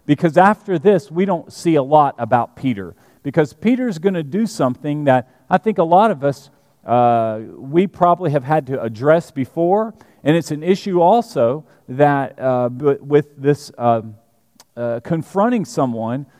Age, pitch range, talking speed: 40-59, 135-190 Hz, 160 wpm